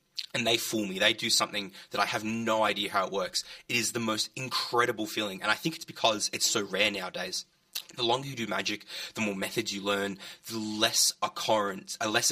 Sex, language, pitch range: male, English, 110-170 Hz